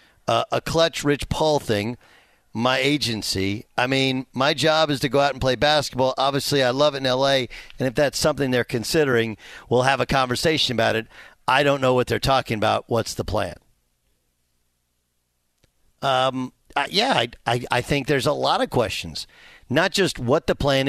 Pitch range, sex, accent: 115-150 Hz, male, American